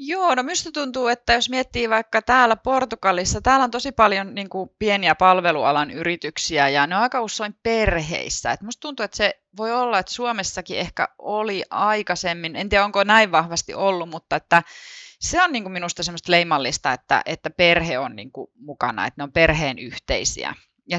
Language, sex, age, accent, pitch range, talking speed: Finnish, female, 30-49, native, 145-205 Hz, 165 wpm